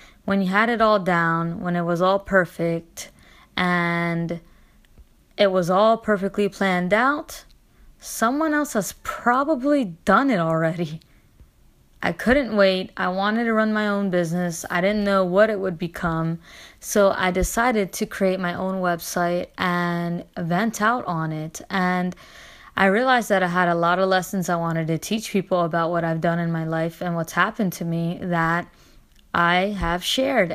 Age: 20-39